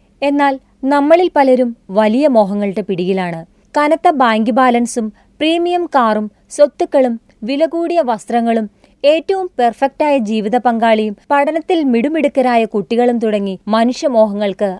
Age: 30-49